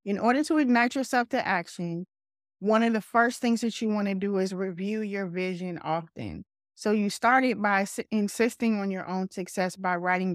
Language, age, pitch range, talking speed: English, 20-39, 185-235 Hz, 190 wpm